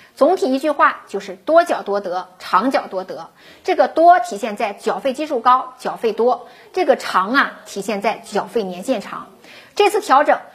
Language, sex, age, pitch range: Chinese, female, 50-69, 210-275 Hz